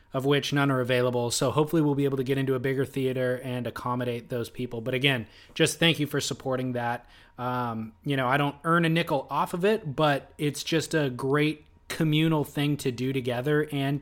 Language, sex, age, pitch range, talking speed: English, male, 20-39, 120-145 Hz, 215 wpm